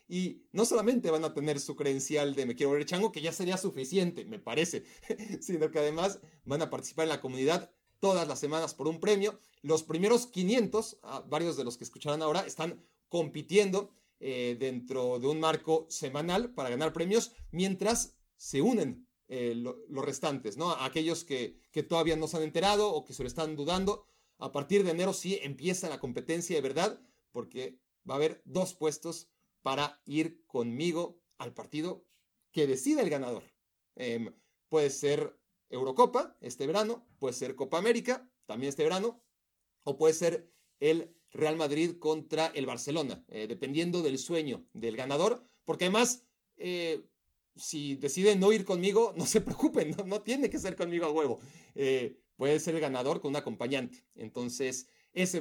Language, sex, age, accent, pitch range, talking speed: Spanish, male, 40-59, Mexican, 145-205 Hz, 170 wpm